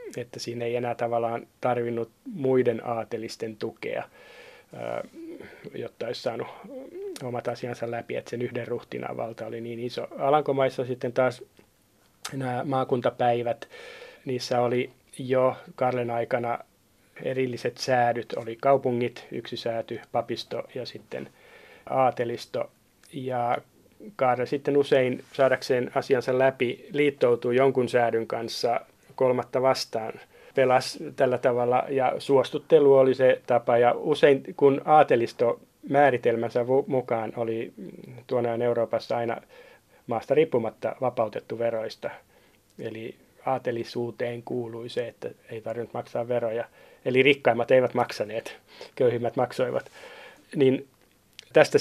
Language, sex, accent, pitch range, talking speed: Finnish, male, native, 120-135 Hz, 110 wpm